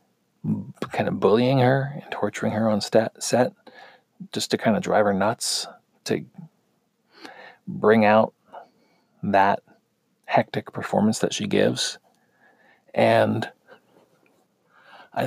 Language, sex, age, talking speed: English, male, 40-59, 110 wpm